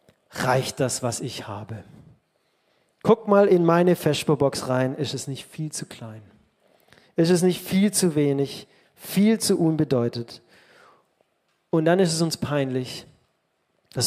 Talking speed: 140 wpm